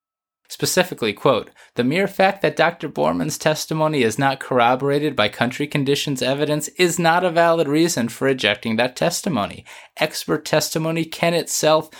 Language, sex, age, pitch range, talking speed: English, male, 20-39, 115-160 Hz, 145 wpm